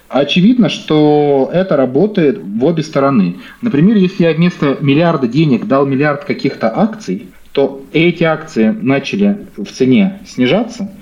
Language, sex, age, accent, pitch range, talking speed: Russian, male, 30-49, native, 140-205 Hz, 130 wpm